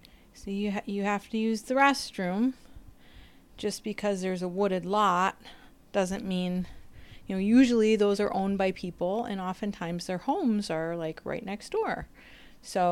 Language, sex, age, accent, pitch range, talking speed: English, female, 30-49, American, 185-245 Hz, 165 wpm